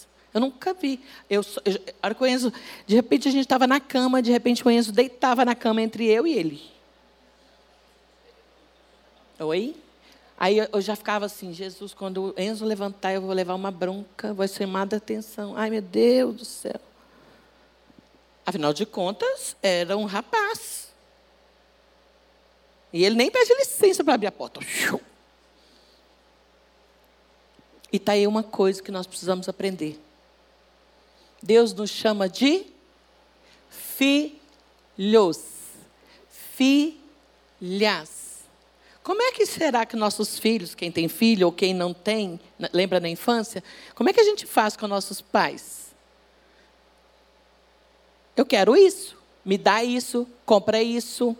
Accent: Brazilian